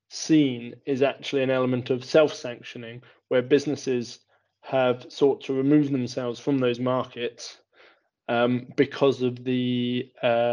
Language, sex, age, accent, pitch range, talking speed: English, male, 20-39, British, 125-145 Hz, 125 wpm